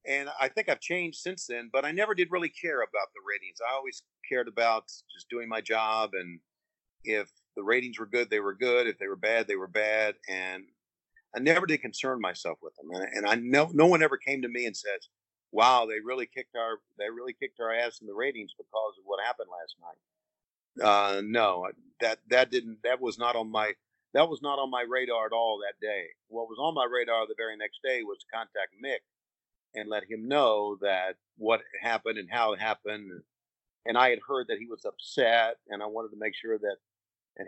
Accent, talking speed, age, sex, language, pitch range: American, 225 wpm, 40-59, male, Hebrew, 105-170 Hz